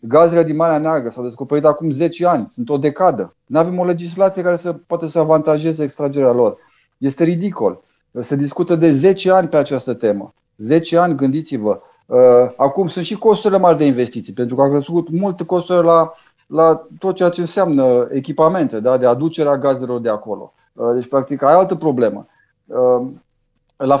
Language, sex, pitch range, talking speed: Romanian, male, 140-180 Hz, 170 wpm